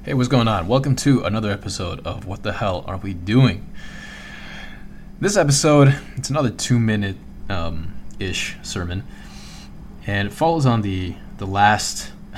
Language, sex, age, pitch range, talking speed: English, male, 20-39, 90-115 Hz, 140 wpm